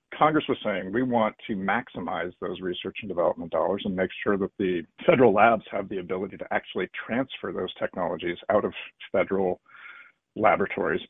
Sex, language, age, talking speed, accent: male, English, 40-59, 170 wpm, American